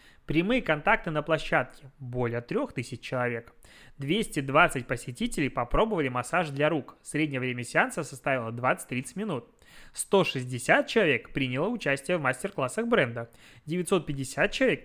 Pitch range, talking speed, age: 135-175 Hz, 115 wpm, 20-39